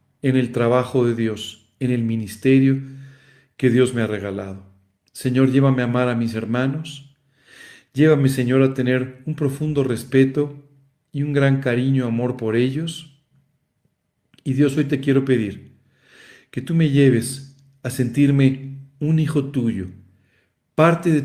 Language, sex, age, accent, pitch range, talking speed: Spanish, male, 40-59, Mexican, 115-140 Hz, 145 wpm